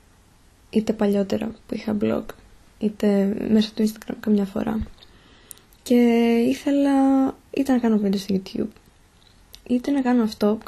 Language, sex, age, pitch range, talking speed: Greek, female, 20-39, 180-235 Hz, 135 wpm